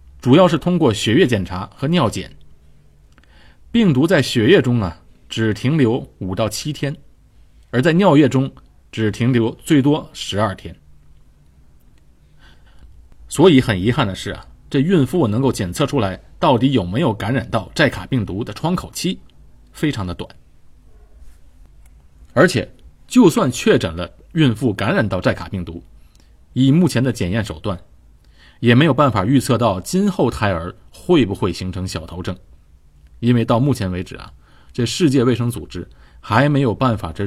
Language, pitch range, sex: Chinese, 85-130 Hz, male